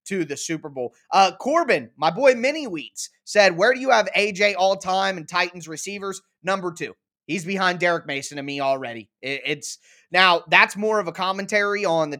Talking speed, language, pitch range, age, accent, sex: 190 wpm, English, 155-195 Hz, 20-39, American, male